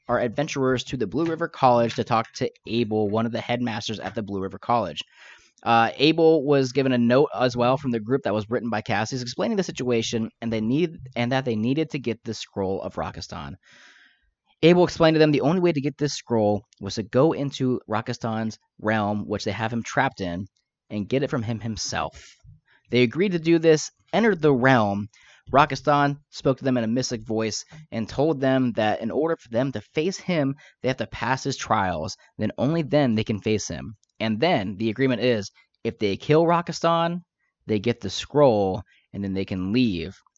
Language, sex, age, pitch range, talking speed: English, male, 20-39, 110-140 Hz, 205 wpm